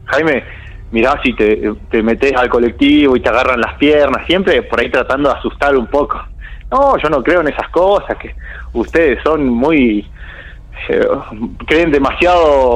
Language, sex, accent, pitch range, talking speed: Spanish, male, Argentinian, 100-150 Hz, 165 wpm